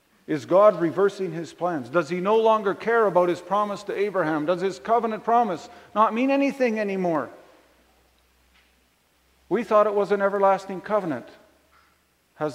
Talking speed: 150 wpm